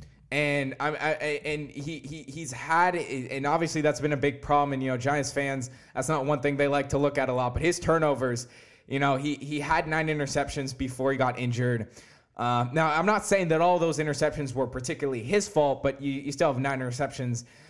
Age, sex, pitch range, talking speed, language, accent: 20-39, male, 130-165 Hz, 220 wpm, English, American